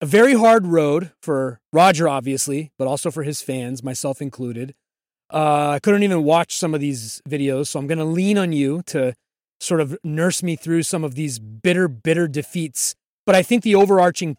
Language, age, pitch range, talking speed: English, 30-49, 145-180 Hz, 195 wpm